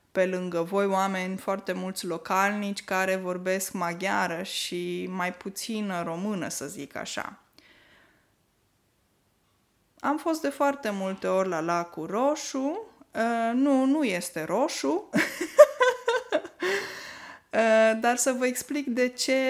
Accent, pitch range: native, 185-255 Hz